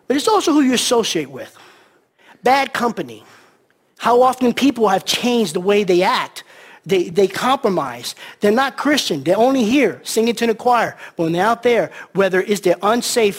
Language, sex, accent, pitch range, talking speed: English, male, American, 180-235 Hz, 180 wpm